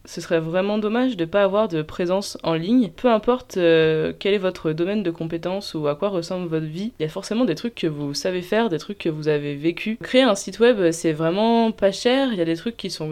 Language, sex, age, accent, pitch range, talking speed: French, female, 20-39, French, 165-205 Hz, 265 wpm